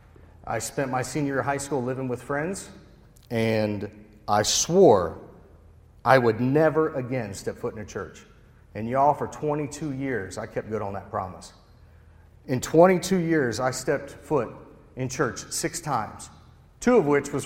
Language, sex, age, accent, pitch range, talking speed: English, male, 40-59, American, 105-140 Hz, 165 wpm